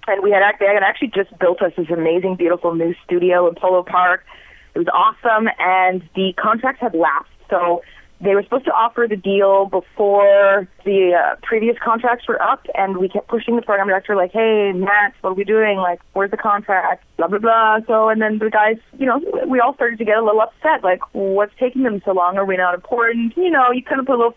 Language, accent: English, American